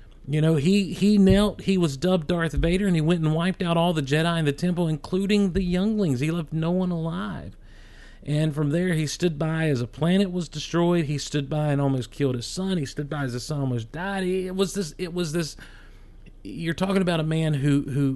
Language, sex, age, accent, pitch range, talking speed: English, male, 40-59, American, 135-190 Hz, 235 wpm